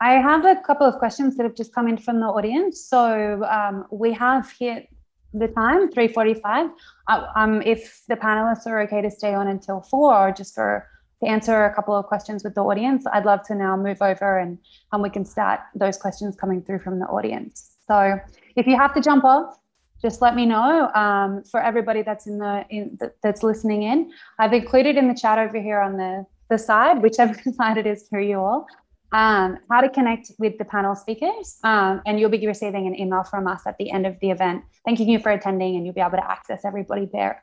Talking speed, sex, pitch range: 215 wpm, female, 200-235 Hz